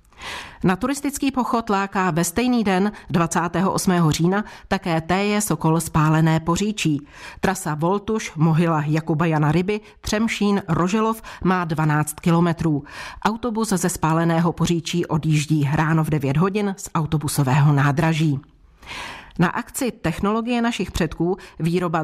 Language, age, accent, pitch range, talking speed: Czech, 40-59, native, 160-200 Hz, 110 wpm